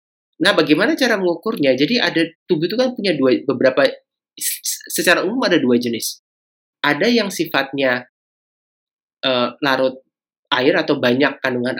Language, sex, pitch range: Indonesian, male, 125-175 Hz